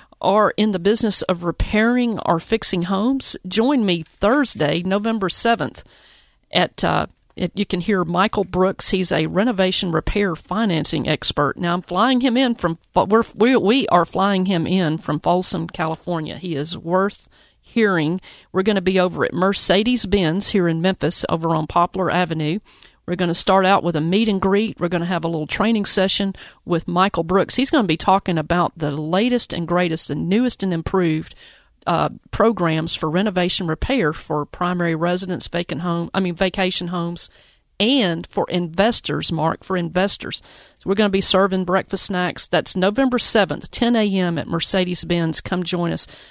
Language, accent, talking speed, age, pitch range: English, American, 175 wpm, 50-69, 170-205 Hz